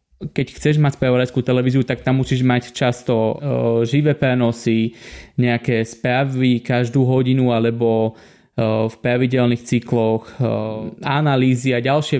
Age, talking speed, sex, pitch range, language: 20-39, 125 wpm, male, 120-135 Hz, Slovak